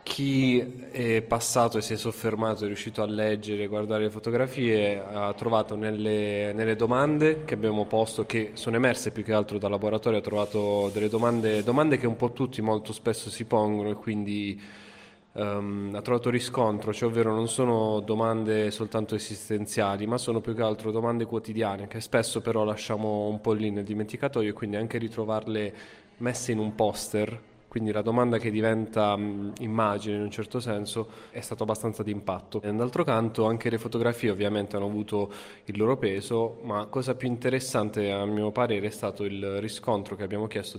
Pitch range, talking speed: 105-115 Hz, 175 wpm